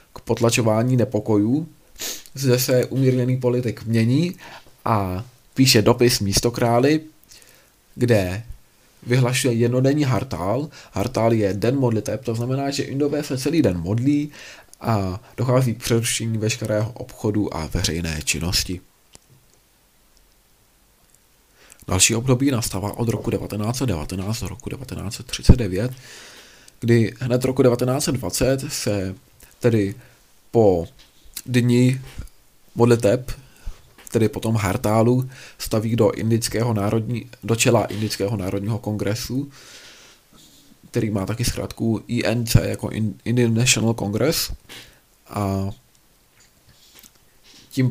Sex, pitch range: male, 105-125 Hz